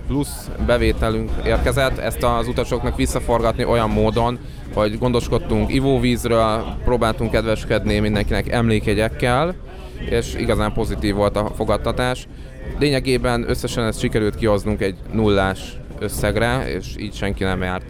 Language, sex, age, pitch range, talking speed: Hungarian, male, 20-39, 105-125 Hz, 115 wpm